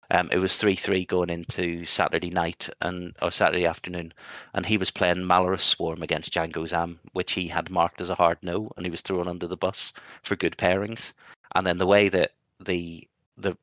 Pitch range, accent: 85-95 Hz, British